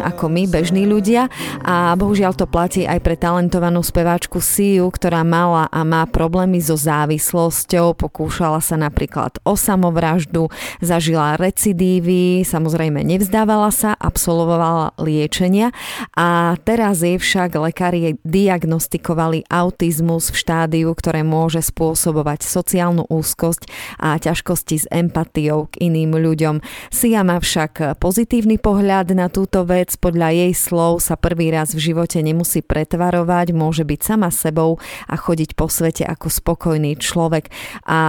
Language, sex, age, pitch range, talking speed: Slovak, female, 30-49, 160-180 Hz, 130 wpm